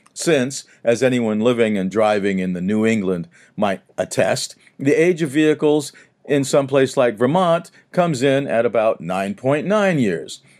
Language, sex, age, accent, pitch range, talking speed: English, male, 50-69, American, 110-150 Hz, 155 wpm